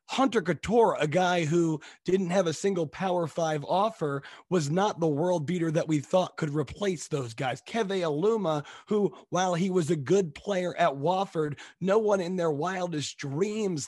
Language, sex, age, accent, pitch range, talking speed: English, male, 30-49, American, 150-185 Hz, 175 wpm